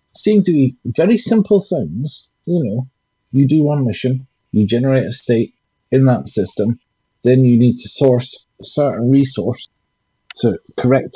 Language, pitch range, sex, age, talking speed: English, 110-140 Hz, male, 50-69, 155 wpm